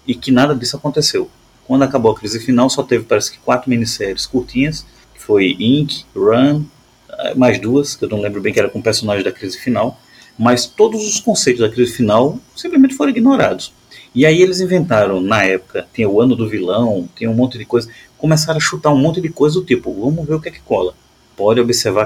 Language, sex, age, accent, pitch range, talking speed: Portuguese, male, 30-49, Brazilian, 110-160 Hz, 215 wpm